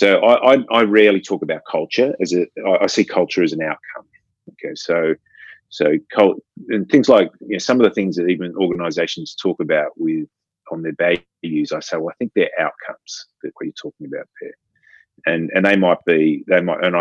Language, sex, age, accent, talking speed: English, male, 30-49, Australian, 205 wpm